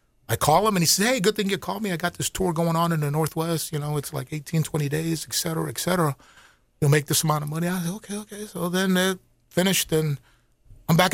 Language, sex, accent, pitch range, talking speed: English, male, American, 120-185 Hz, 265 wpm